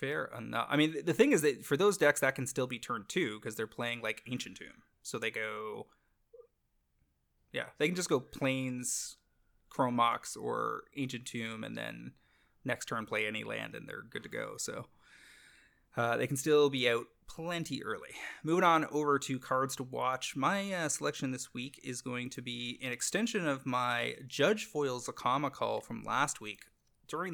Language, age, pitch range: English, 20-39, 120-145 Hz